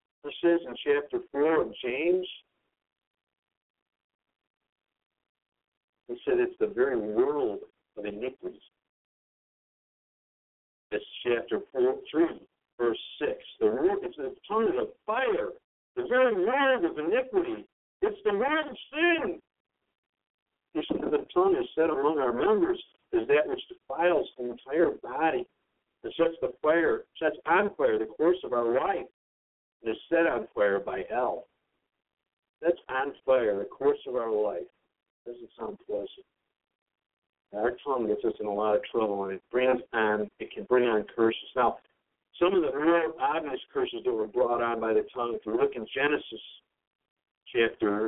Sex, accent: male, American